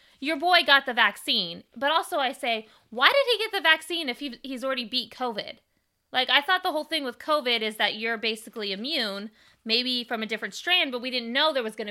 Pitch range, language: 195-265 Hz, English